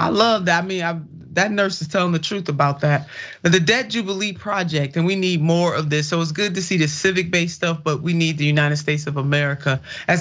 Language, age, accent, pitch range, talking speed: English, 30-49, American, 145-175 Hz, 245 wpm